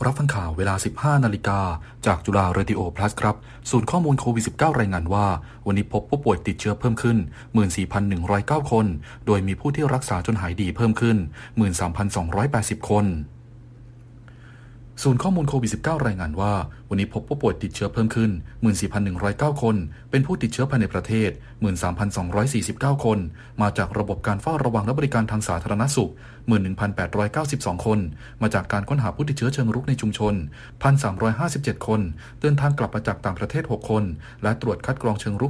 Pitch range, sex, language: 105-125 Hz, male, Thai